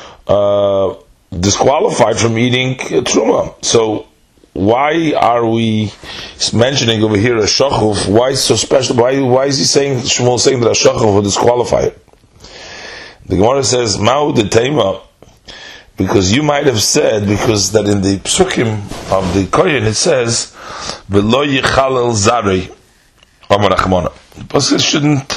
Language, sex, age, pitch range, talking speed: English, male, 30-49, 100-125 Hz, 130 wpm